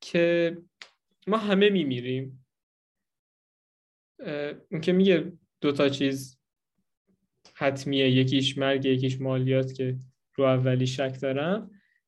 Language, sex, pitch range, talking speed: Persian, male, 135-205 Hz, 100 wpm